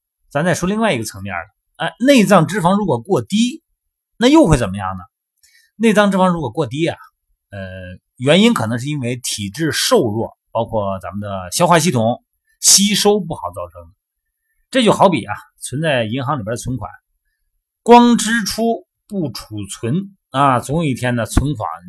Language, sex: Chinese, male